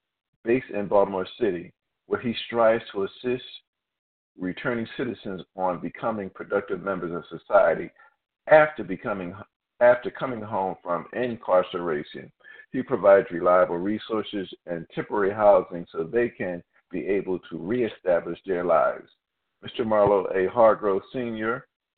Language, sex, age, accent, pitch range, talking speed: English, male, 50-69, American, 90-120 Hz, 125 wpm